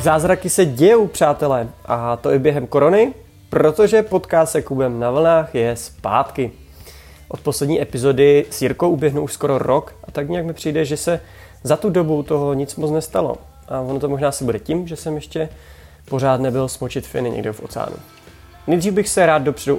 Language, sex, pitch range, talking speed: Czech, male, 115-155 Hz, 185 wpm